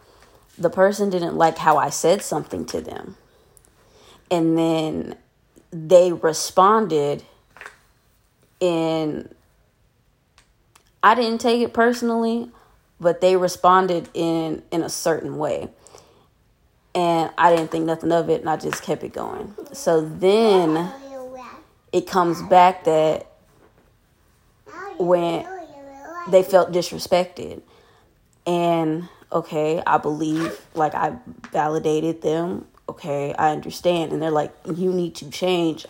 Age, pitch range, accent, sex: 20-39, 160-185 Hz, American, female